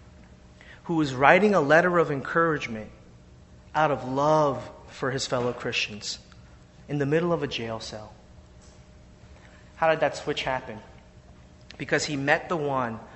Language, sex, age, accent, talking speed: English, male, 30-49, American, 140 wpm